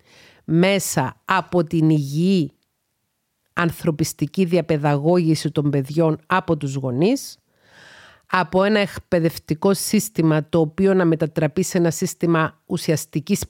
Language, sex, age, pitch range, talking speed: Greek, female, 40-59, 155-185 Hz, 100 wpm